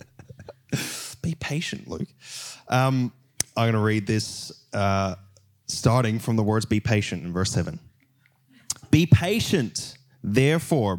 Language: English